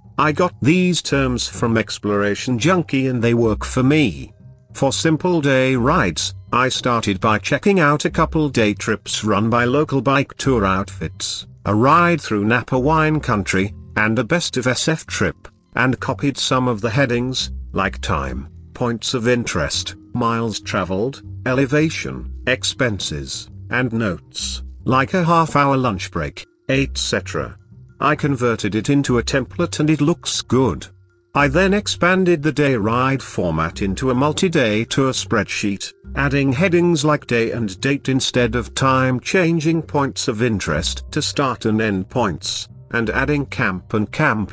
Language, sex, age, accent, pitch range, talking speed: English, male, 50-69, British, 100-140 Hz, 150 wpm